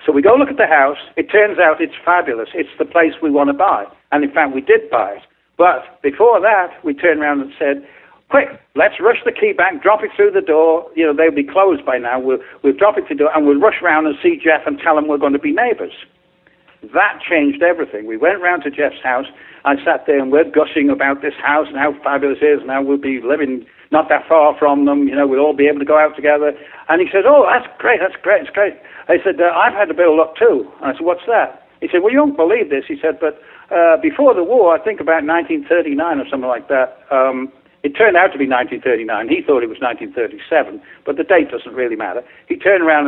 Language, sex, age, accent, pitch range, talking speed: English, male, 60-79, British, 140-180 Hz, 260 wpm